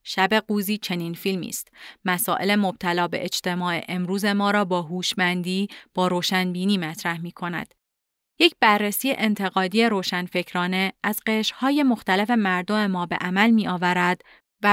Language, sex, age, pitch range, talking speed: Persian, female, 30-49, 180-220 Hz, 130 wpm